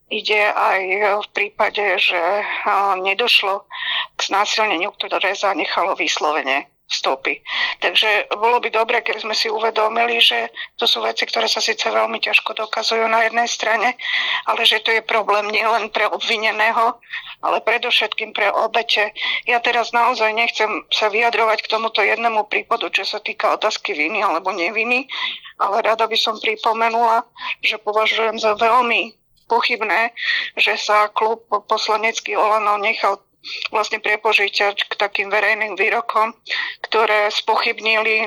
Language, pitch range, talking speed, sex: Slovak, 215-235 Hz, 135 wpm, female